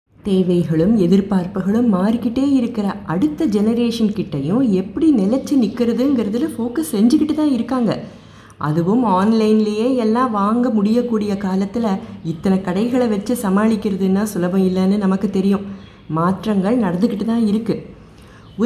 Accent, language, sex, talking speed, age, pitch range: native, Tamil, female, 100 wpm, 20-39, 180-240 Hz